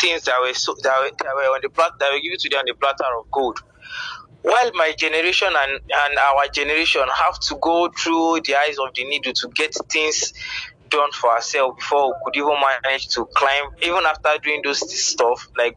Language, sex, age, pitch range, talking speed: English, male, 20-39, 135-175 Hz, 220 wpm